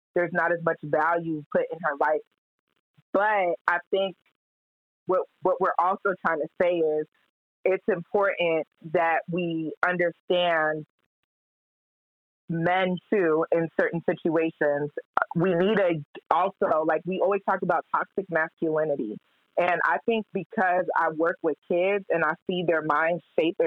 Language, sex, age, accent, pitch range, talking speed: English, female, 20-39, American, 160-190 Hz, 140 wpm